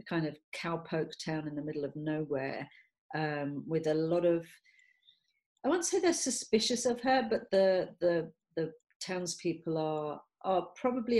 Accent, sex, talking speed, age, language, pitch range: British, female, 155 wpm, 40-59, English, 155-180 Hz